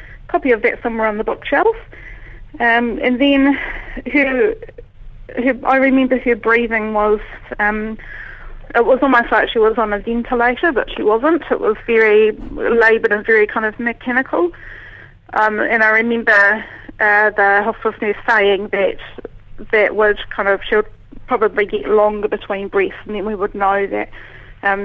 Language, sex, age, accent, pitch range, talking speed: English, female, 30-49, British, 205-235 Hz, 160 wpm